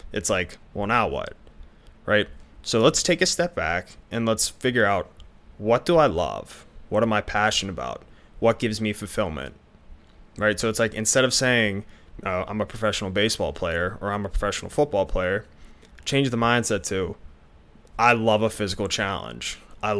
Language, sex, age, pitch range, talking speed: English, male, 20-39, 90-115 Hz, 170 wpm